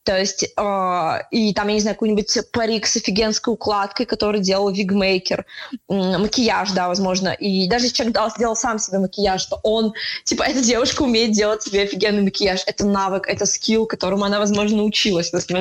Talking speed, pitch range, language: 175 wpm, 200-240 Hz, Russian